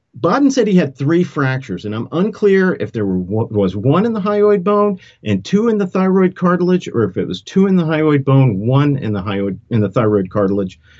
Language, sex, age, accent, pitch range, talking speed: English, male, 50-69, American, 115-165 Hz, 225 wpm